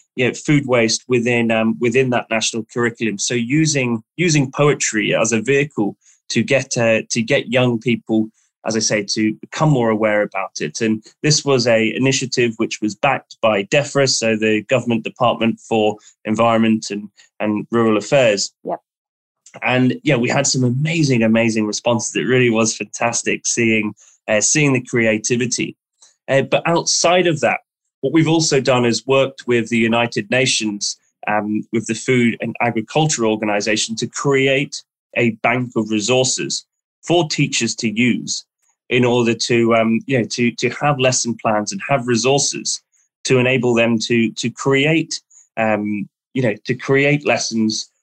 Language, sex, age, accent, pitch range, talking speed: English, male, 20-39, British, 110-130 Hz, 160 wpm